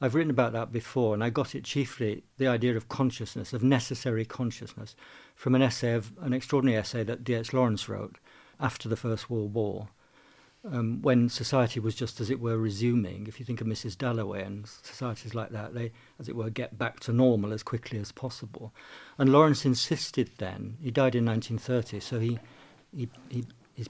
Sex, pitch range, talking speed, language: male, 110-130 Hz, 185 wpm, English